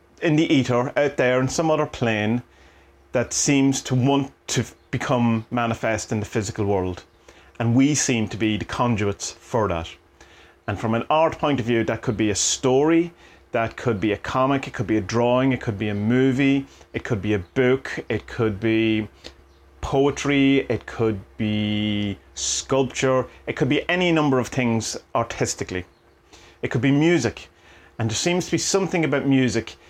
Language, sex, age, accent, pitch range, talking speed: English, male, 30-49, British, 110-135 Hz, 180 wpm